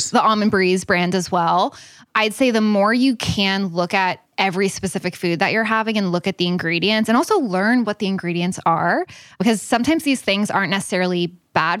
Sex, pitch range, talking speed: female, 175-215 Hz, 200 wpm